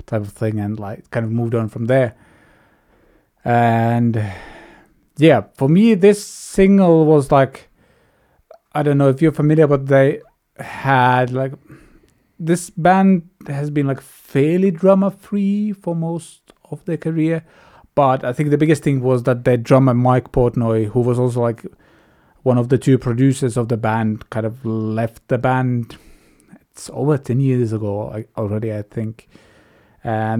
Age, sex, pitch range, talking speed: 30-49, male, 120-165 Hz, 160 wpm